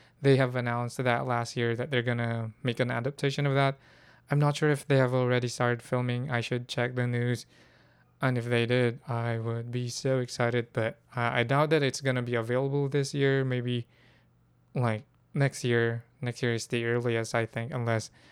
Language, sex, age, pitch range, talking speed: English, male, 20-39, 120-135 Hz, 205 wpm